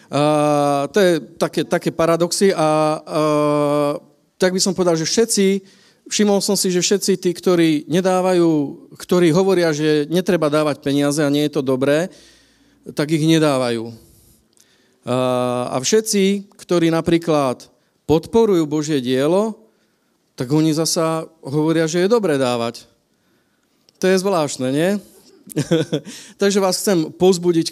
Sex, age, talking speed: male, 40-59, 130 wpm